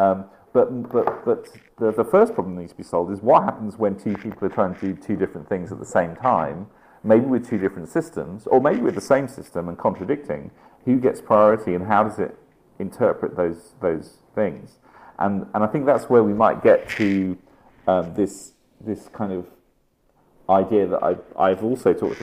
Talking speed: 200 wpm